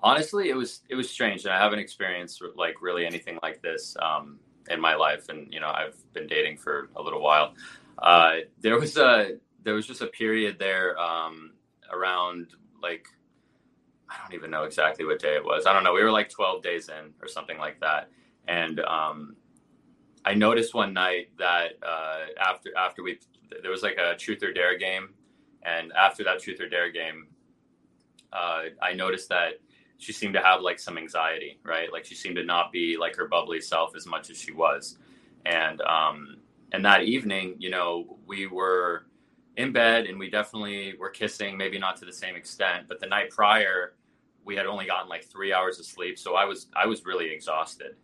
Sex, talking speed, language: male, 200 wpm, English